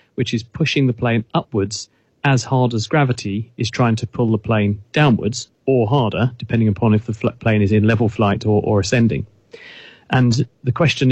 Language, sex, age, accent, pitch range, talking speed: English, male, 40-59, British, 110-135 Hz, 185 wpm